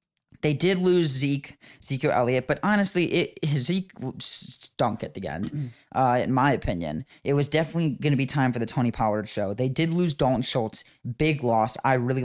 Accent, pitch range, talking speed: American, 115-155 Hz, 190 wpm